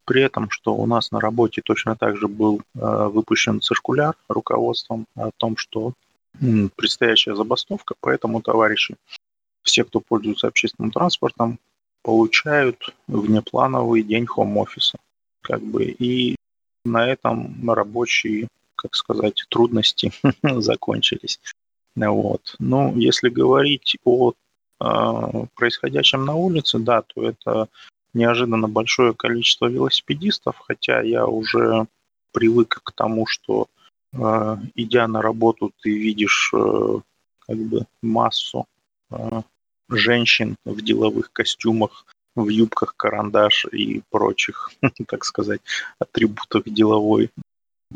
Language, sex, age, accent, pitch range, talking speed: Russian, male, 30-49, native, 110-120 Hz, 110 wpm